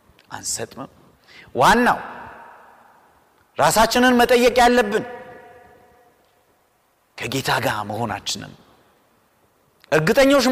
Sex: male